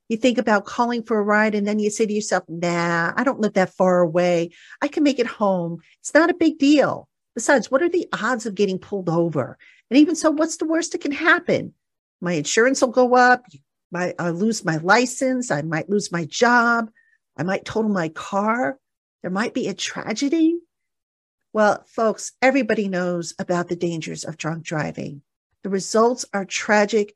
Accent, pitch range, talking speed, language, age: American, 175-230 Hz, 190 wpm, English, 50-69